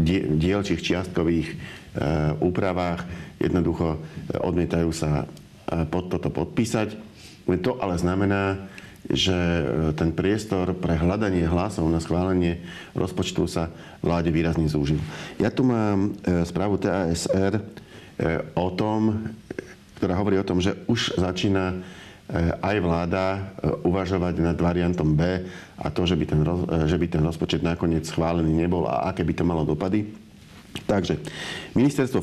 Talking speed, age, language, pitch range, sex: 115 wpm, 50-69, Slovak, 85-95 Hz, male